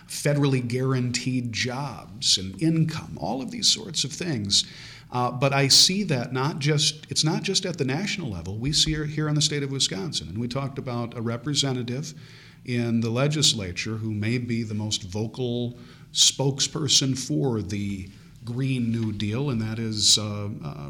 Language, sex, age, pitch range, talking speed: English, male, 50-69, 105-140 Hz, 170 wpm